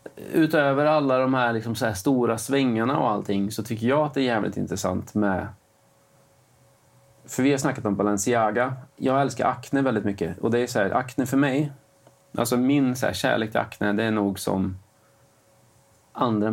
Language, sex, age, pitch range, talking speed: Swedish, male, 30-49, 105-130 Hz, 185 wpm